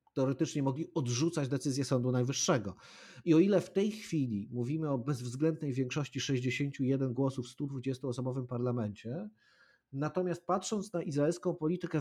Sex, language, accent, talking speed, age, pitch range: male, Polish, native, 130 wpm, 50-69, 125-180 Hz